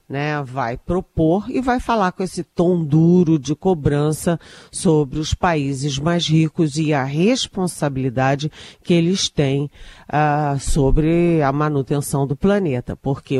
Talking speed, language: 130 wpm, Portuguese